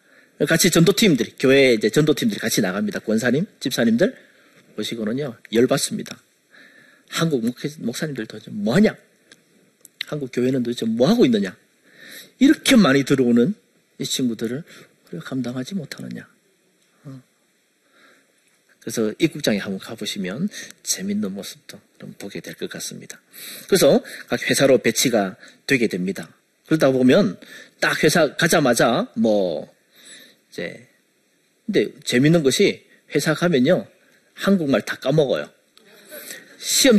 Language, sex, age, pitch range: Korean, male, 40-59, 125-195 Hz